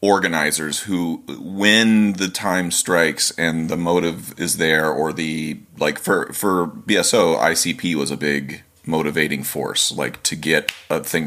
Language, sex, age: English, male, 30-49